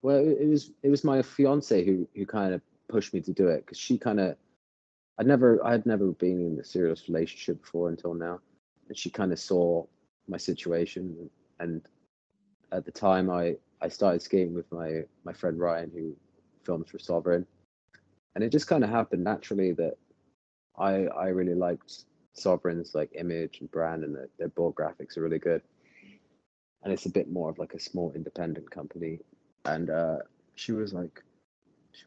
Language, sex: English, male